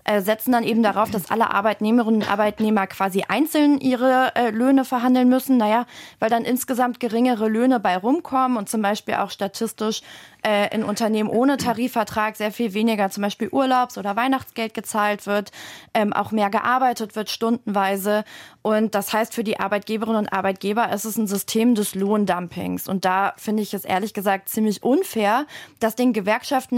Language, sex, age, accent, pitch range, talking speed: German, female, 20-39, German, 205-235 Hz, 170 wpm